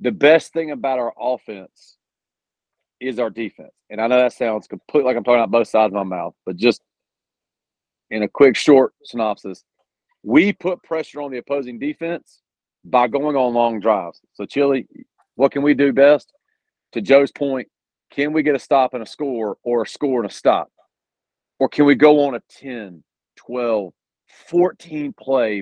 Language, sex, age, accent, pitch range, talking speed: English, male, 40-59, American, 125-160 Hz, 180 wpm